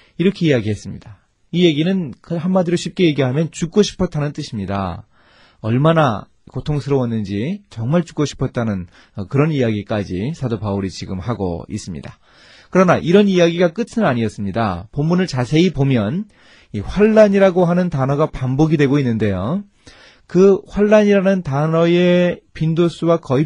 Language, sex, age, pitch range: Korean, male, 30-49, 110-170 Hz